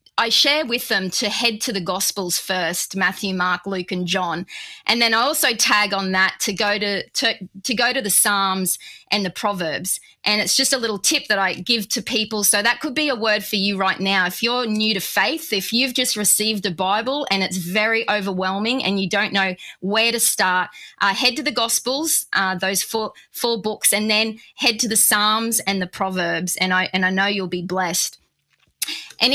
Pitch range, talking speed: 195-245 Hz, 215 wpm